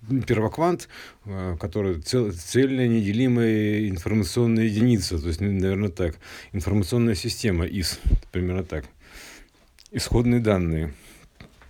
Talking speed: 85 wpm